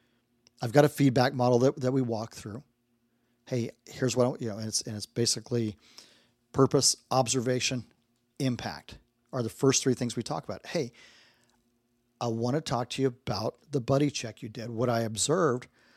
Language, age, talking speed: English, 40-59, 185 wpm